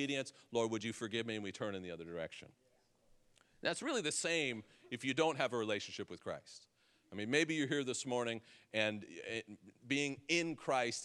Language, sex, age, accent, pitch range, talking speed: English, male, 40-59, American, 105-125 Hz, 190 wpm